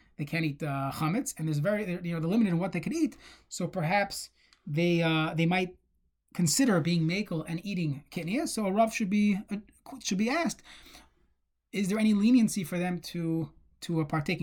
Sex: male